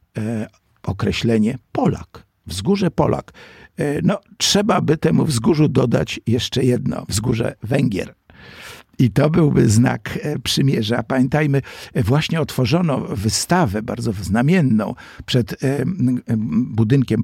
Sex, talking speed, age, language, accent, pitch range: male, 95 wpm, 50-69, Polish, native, 110-155 Hz